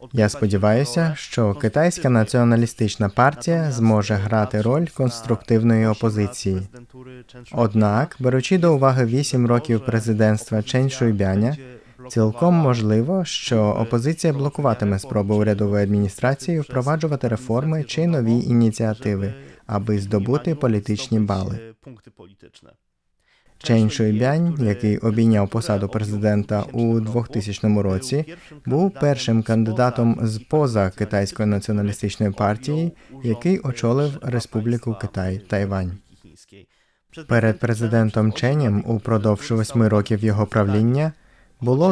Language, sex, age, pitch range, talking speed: Ukrainian, male, 20-39, 105-130 Hz, 95 wpm